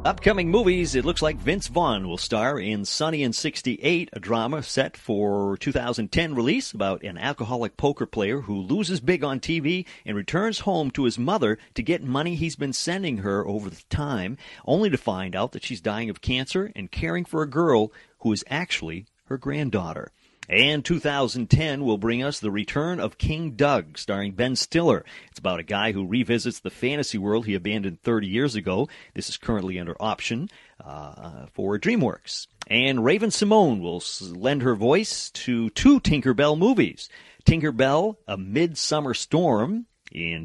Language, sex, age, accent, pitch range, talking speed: English, male, 40-59, American, 105-165 Hz, 170 wpm